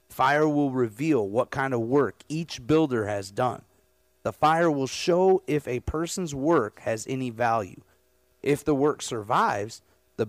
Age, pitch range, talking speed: 30-49, 110-150 Hz, 155 wpm